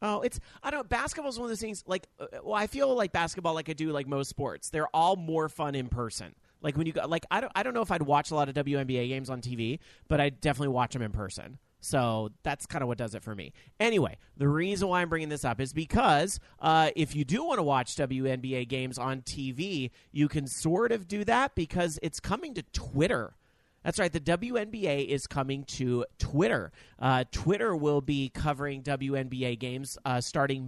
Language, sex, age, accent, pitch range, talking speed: English, male, 30-49, American, 130-160 Hz, 225 wpm